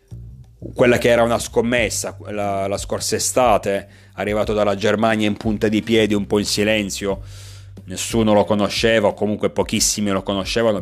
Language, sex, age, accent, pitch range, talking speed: Italian, male, 30-49, native, 95-105 Hz, 155 wpm